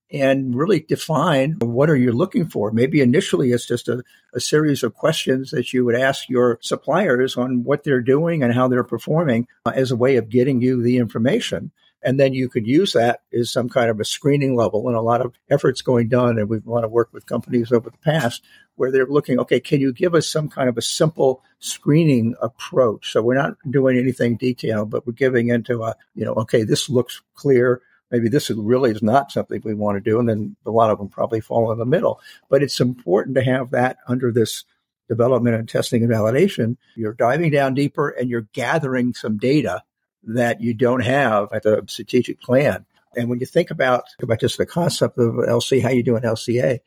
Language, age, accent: English, 50-69, American